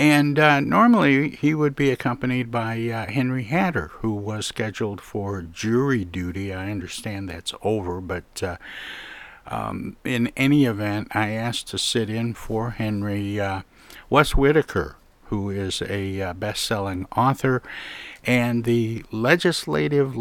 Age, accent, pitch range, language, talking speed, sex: 60-79, American, 95-120 Hz, English, 135 wpm, male